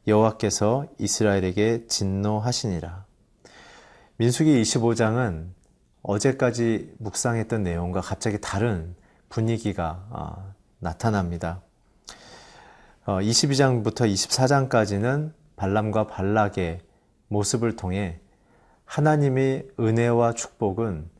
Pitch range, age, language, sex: 95-120 Hz, 40-59, Korean, male